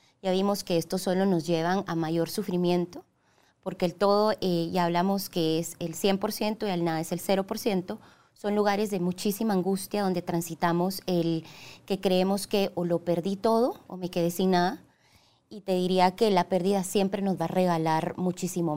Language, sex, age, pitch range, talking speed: Spanish, female, 20-39, 170-205 Hz, 185 wpm